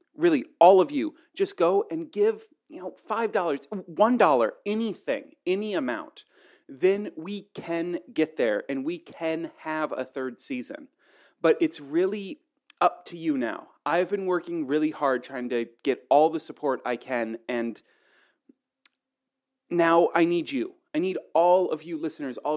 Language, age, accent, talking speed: English, 30-49, American, 155 wpm